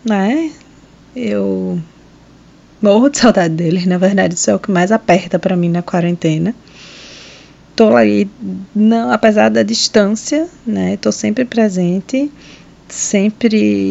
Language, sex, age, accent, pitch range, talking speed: Portuguese, female, 20-39, Brazilian, 185-230 Hz, 130 wpm